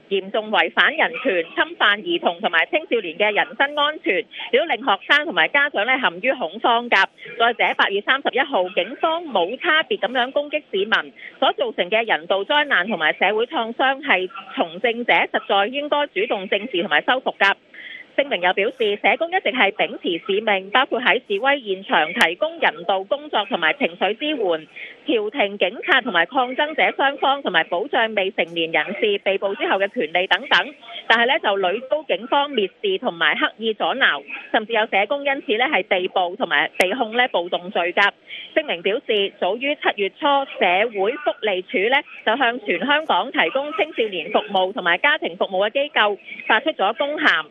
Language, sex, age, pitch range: English, female, 40-59, 205-305 Hz